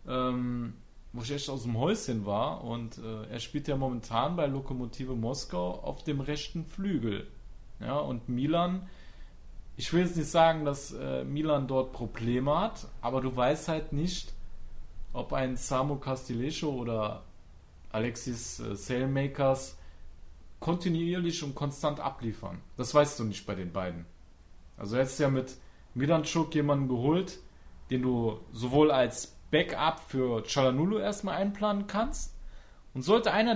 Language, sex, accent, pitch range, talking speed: German, male, German, 115-165 Hz, 140 wpm